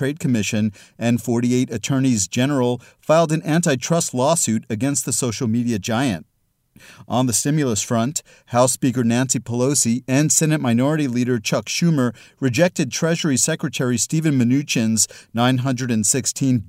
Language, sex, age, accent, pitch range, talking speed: English, male, 40-59, American, 115-140 Hz, 130 wpm